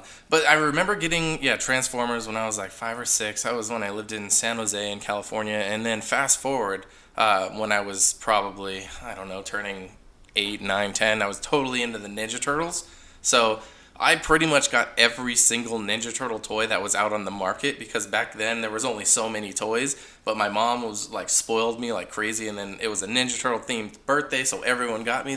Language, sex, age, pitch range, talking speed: English, male, 20-39, 105-125 Hz, 220 wpm